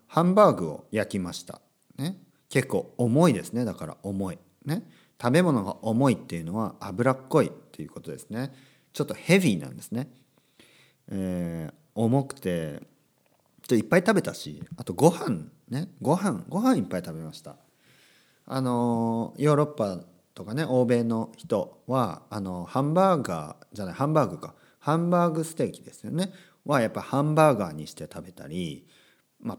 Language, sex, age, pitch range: Japanese, male, 40-59, 105-160 Hz